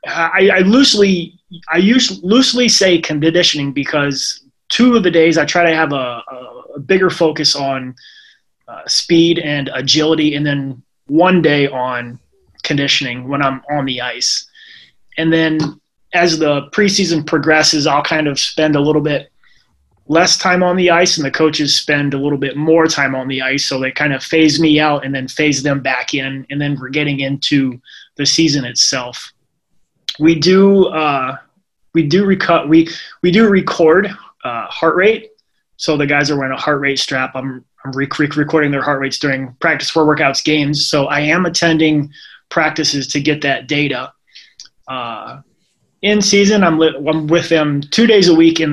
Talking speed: 180 wpm